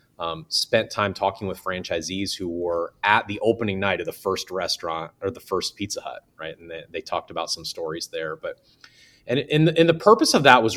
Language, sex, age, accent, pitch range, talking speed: English, male, 30-49, American, 85-125 Hz, 215 wpm